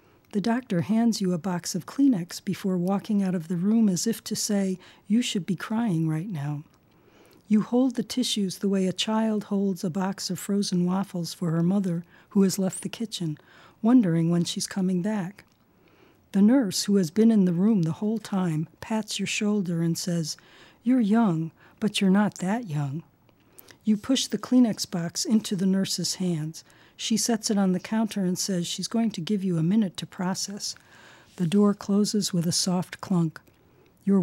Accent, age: American, 40-59